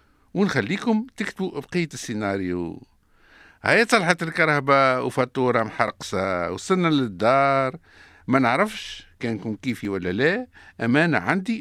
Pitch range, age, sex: 130-180 Hz, 50-69, male